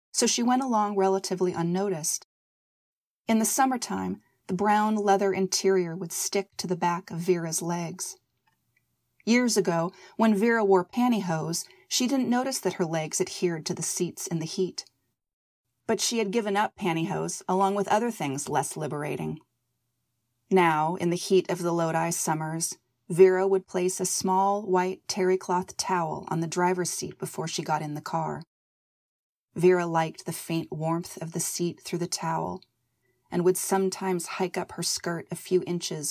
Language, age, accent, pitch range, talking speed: English, 30-49, American, 170-200 Hz, 165 wpm